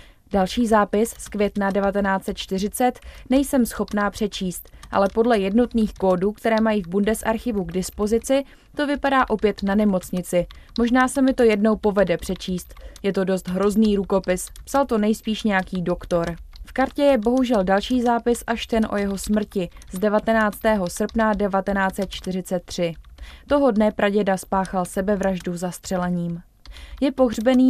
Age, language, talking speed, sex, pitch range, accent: 20-39, Czech, 135 wpm, female, 190-230 Hz, native